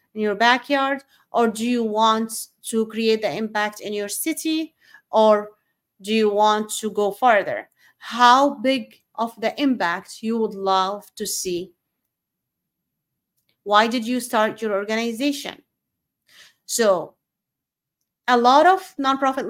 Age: 30-49